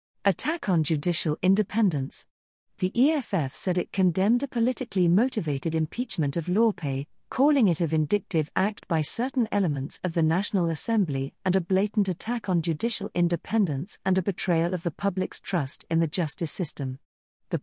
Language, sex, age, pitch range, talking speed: English, female, 50-69, 155-210 Hz, 155 wpm